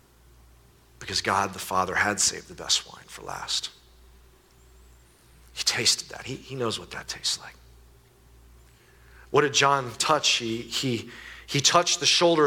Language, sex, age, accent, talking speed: English, male, 40-59, American, 150 wpm